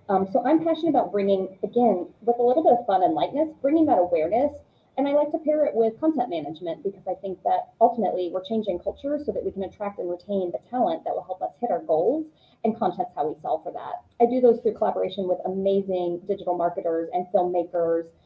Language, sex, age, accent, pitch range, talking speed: English, female, 30-49, American, 180-250 Hz, 225 wpm